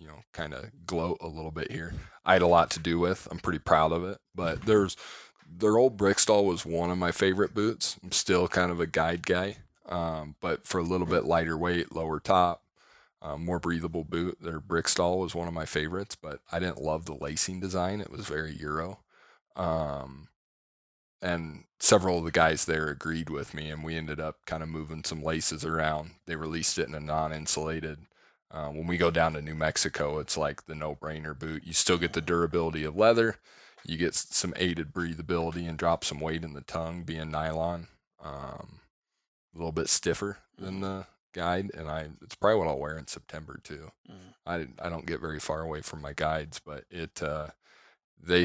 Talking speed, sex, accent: 205 wpm, male, American